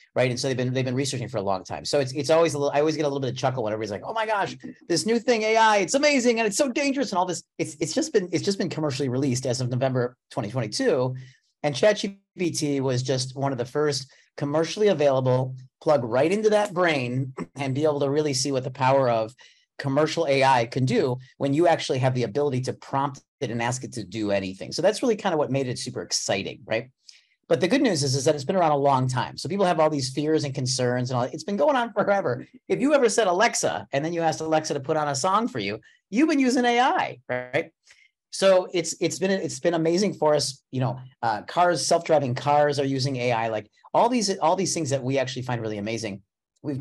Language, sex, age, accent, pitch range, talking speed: English, male, 30-49, American, 130-180 Hz, 250 wpm